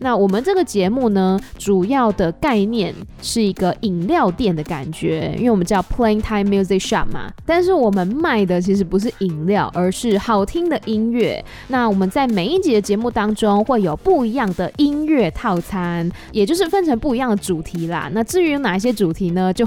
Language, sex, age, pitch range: Chinese, female, 20-39, 185-235 Hz